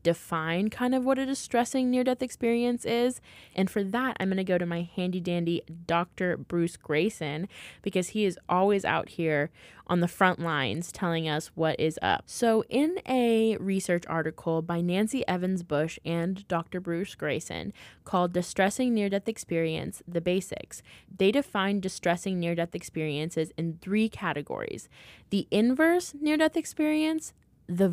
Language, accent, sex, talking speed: English, American, female, 145 wpm